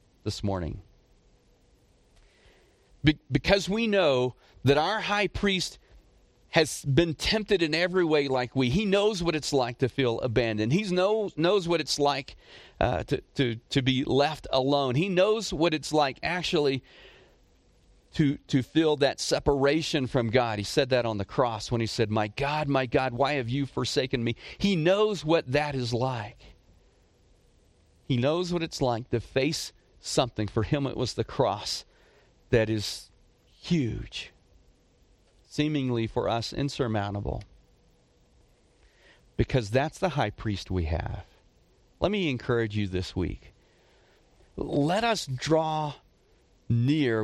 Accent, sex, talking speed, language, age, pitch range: American, male, 140 wpm, English, 40-59, 105-150 Hz